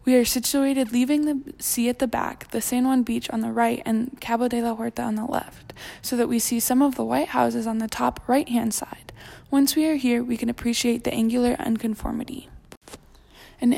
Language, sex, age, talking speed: Czech, female, 10-29, 215 wpm